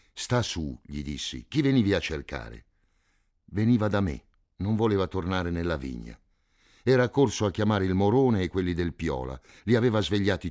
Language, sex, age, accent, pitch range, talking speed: Italian, male, 60-79, native, 80-105 Hz, 165 wpm